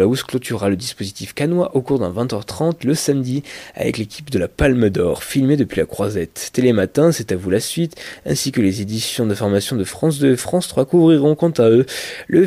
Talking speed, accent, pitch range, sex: 205 wpm, French, 110-150 Hz, male